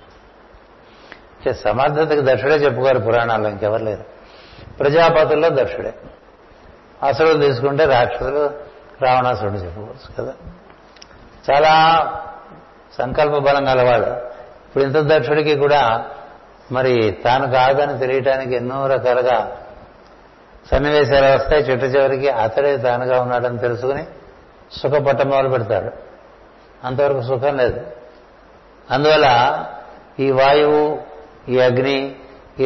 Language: Telugu